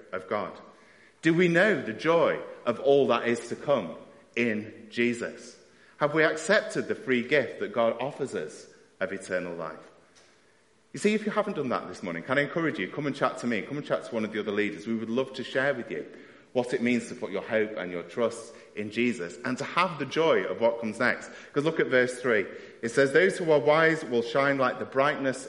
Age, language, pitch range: 30-49, English, 115-160 Hz